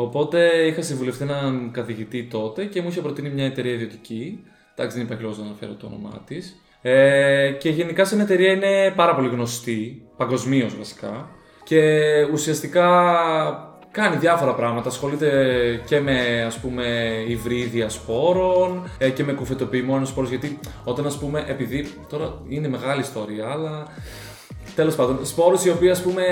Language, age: Greek, 20-39